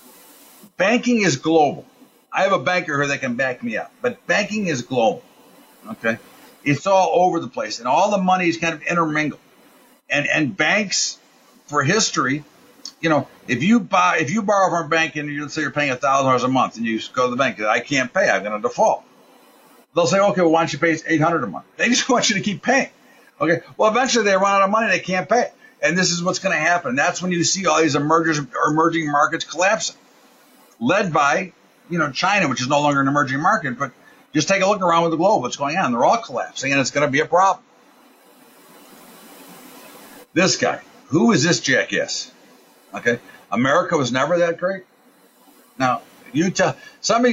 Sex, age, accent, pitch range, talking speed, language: male, 50-69, American, 145-205 Hz, 210 wpm, English